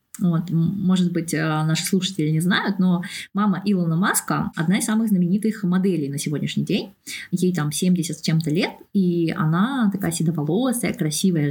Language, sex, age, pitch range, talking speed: Russian, female, 20-39, 170-210 Hz, 155 wpm